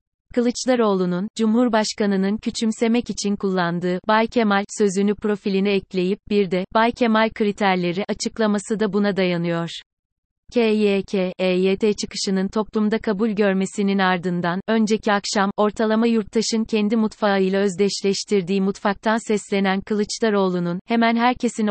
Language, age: Turkish, 30-49